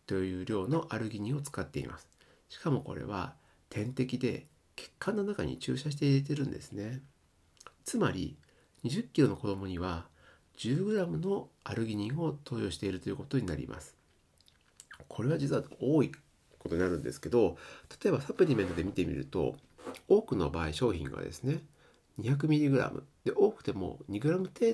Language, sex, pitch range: Japanese, male, 95-145 Hz